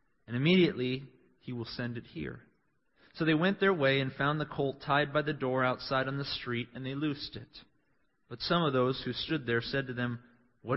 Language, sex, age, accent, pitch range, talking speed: English, male, 30-49, American, 125-160 Hz, 215 wpm